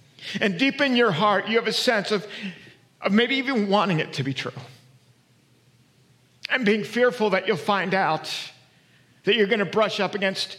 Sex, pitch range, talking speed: male, 155-215 Hz, 180 wpm